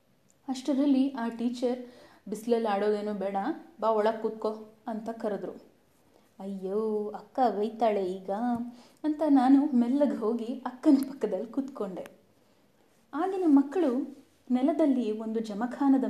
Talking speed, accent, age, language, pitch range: 100 wpm, native, 20-39, Kannada, 215-275 Hz